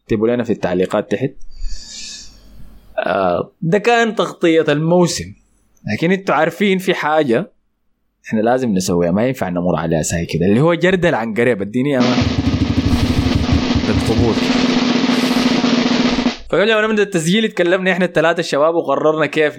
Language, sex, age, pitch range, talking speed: Arabic, male, 20-39, 115-175 Hz, 130 wpm